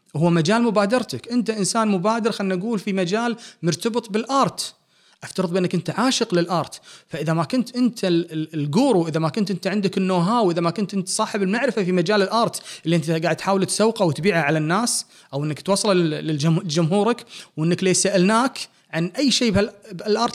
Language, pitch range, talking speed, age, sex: English, 165-215 Hz, 170 wpm, 30-49, male